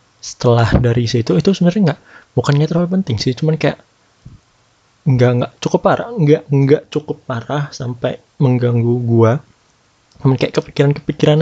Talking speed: 135 wpm